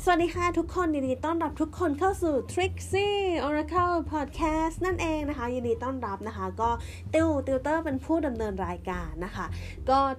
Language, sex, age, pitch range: Thai, female, 20-39, 225-300 Hz